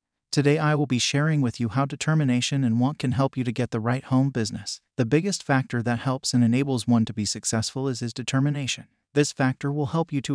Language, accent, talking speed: English, American, 230 wpm